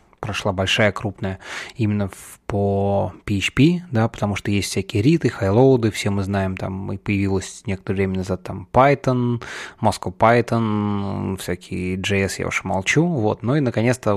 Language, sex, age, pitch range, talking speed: Russian, male, 20-39, 95-115 Hz, 155 wpm